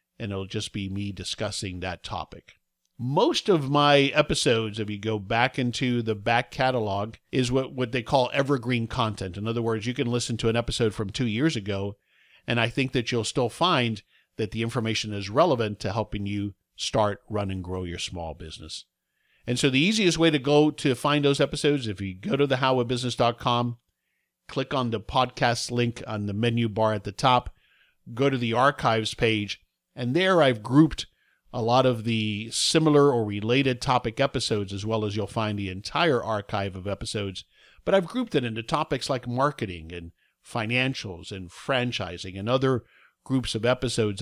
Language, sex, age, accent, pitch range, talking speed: English, male, 50-69, American, 105-130 Hz, 185 wpm